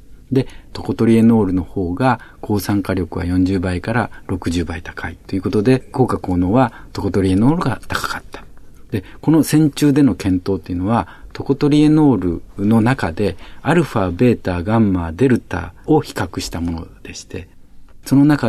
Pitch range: 95-130 Hz